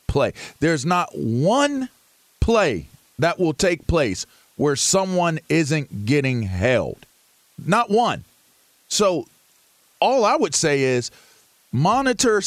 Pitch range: 145-220 Hz